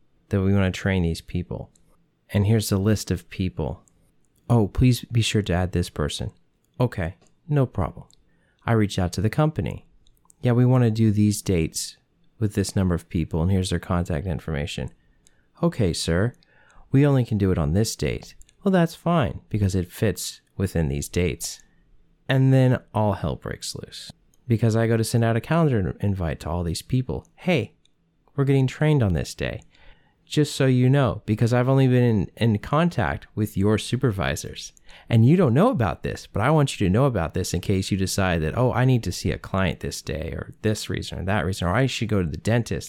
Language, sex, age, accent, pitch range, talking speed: English, male, 30-49, American, 90-125 Hz, 205 wpm